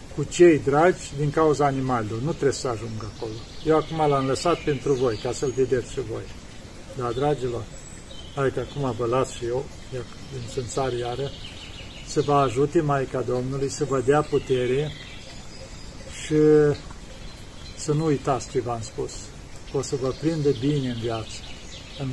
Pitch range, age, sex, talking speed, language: 115-140 Hz, 40-59, male, 155 wpm, Romanian